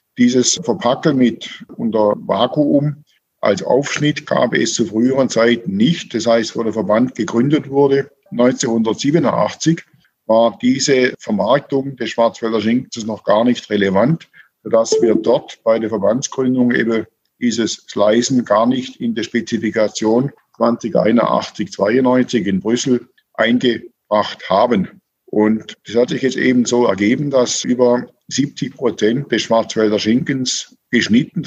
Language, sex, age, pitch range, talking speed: German, male, 50-69, 115-140 Hz, 125 wpm